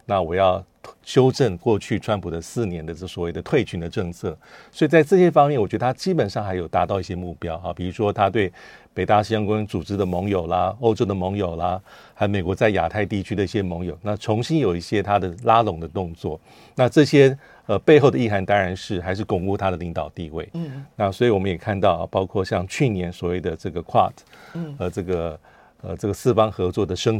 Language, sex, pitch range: Chinese, male, 90-115 Hz